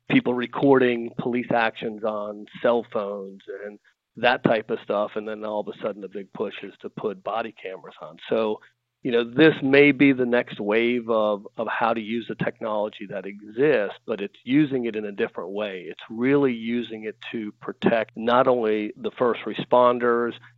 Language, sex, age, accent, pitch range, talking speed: English, male, 40-59, American, 110-125 Hz, 185 wpm